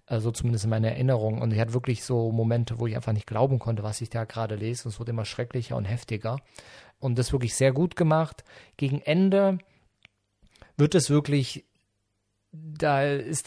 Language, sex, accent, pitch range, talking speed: English, male, German, 110-130 Hz, 185 wpm